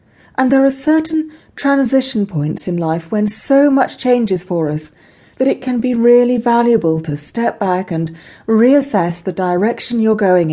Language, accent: English, British